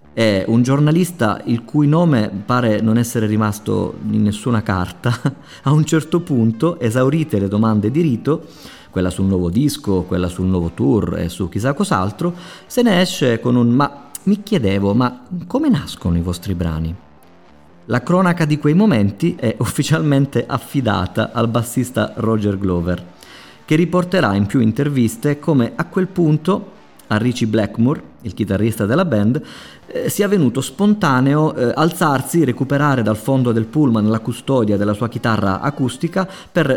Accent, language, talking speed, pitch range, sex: native, Italian, 155 wpm, 100-150 Hz, male